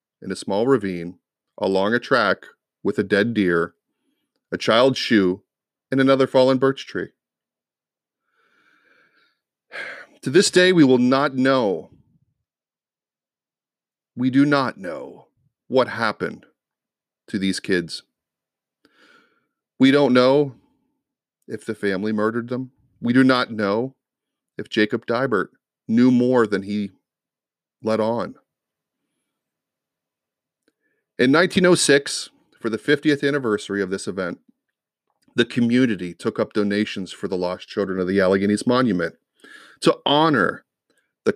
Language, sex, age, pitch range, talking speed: English, male, 40-59, 100-135 Hz, 120 wpm